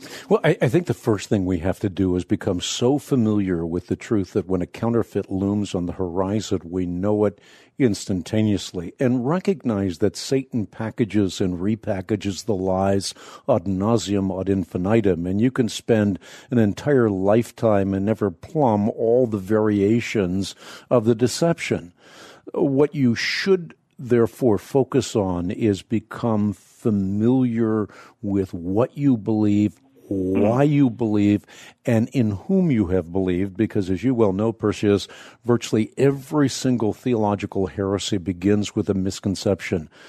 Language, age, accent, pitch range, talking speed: English, 50-69, American, 95-115 Hz, 145 wpm